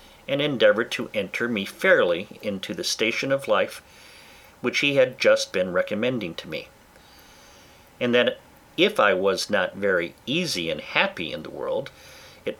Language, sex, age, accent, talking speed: English, male, 50-69, American, 155 wpm